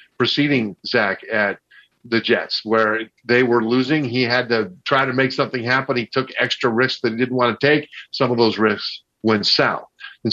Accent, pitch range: American, 115-135 Hz